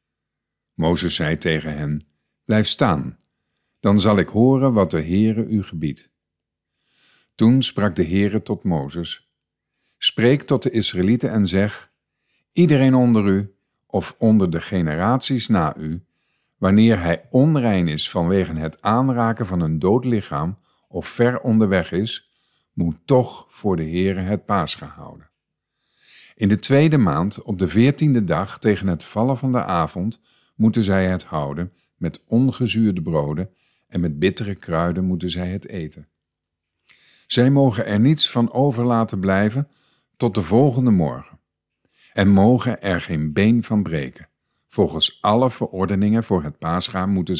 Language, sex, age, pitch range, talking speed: Dutch, male, 50-69, 85-120 Hz, 145 wpm